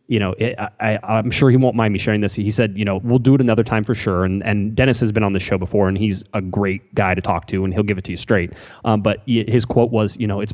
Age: 20-39